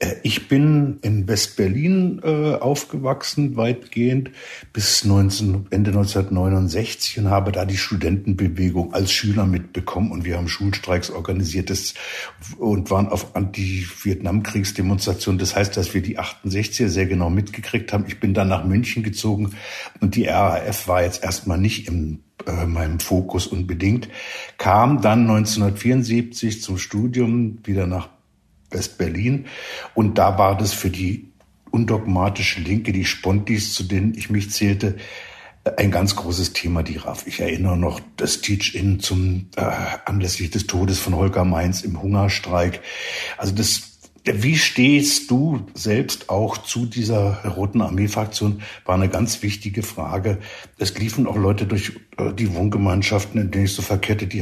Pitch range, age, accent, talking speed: 95-110 Hz, 60-79, German, 140 wpm